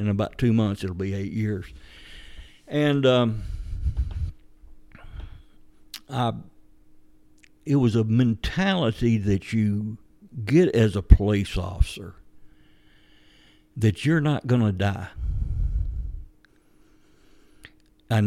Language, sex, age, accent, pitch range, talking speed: English, male, 60-79, American, 100-115 Hz, 90 wpm